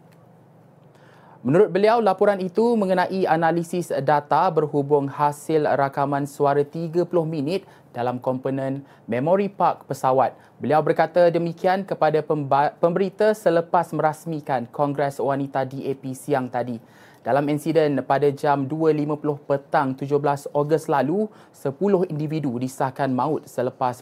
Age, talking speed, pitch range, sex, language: 20-39, 110 wpm, 135-165 Hz, male, Malay